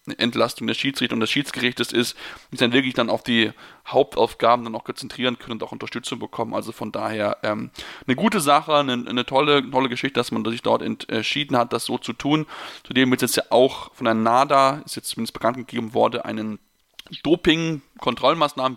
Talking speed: 190 wpm